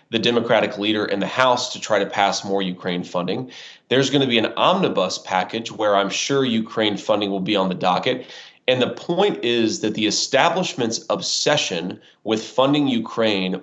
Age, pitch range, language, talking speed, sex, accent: 30-49, 105-125 Hz, English, 180 wpm, male, American